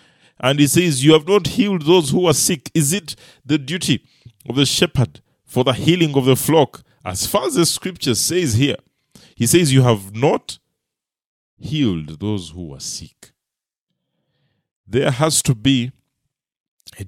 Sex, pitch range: male, 115-150 Hz